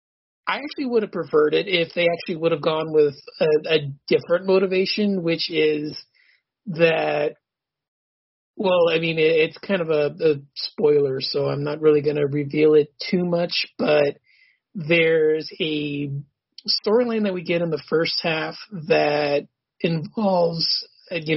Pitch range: 150-185 Hz